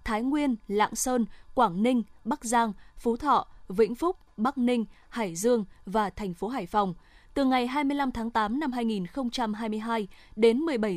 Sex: female